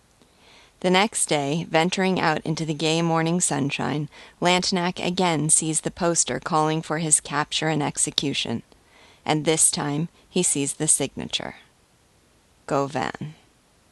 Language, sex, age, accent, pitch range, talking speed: English, female, 40-59, American, 145-170 Hz, 125 wpm